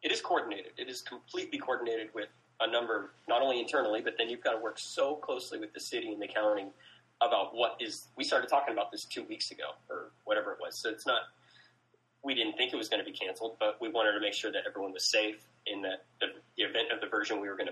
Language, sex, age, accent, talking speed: English, male, 20-39, American, 250 wpm